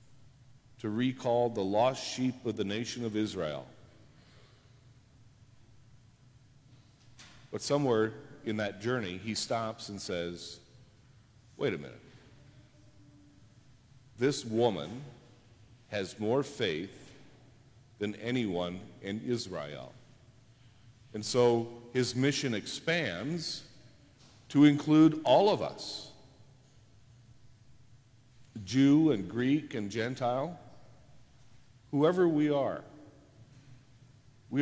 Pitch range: 110-130 Hz